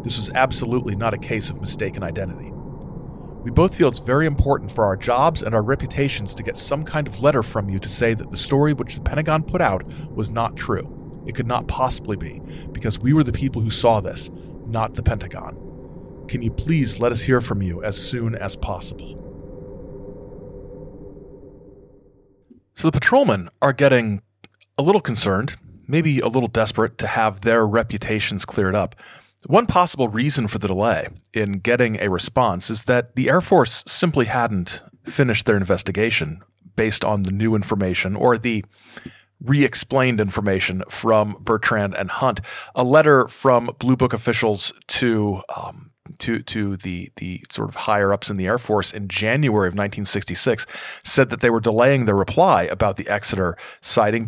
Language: English